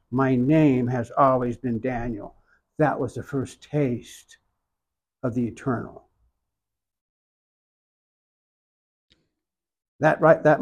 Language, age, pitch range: English, 60-79, 125-160 Hz